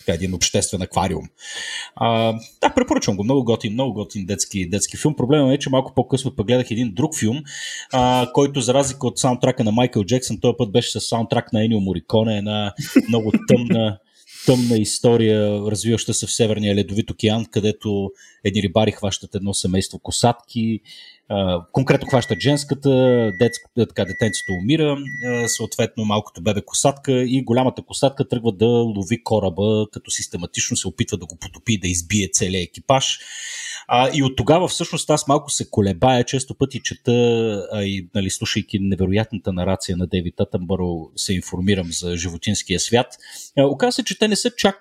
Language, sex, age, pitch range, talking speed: Bulgarian, male, 30-49, 105-135 Hz, 160 wpm